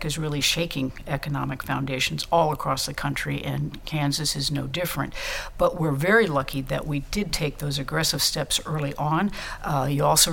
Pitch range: 140-160 Hz